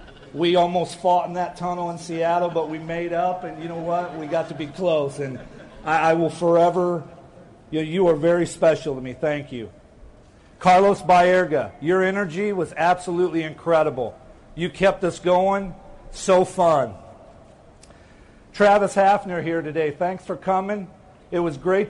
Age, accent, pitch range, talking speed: 50-69, American, 155-185 Hz, 160 wpm